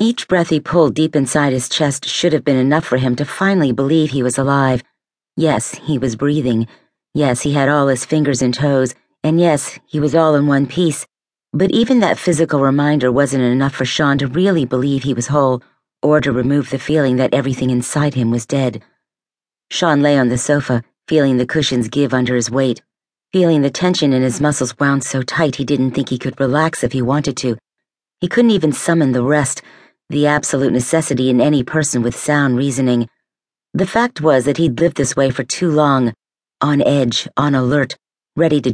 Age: 40-59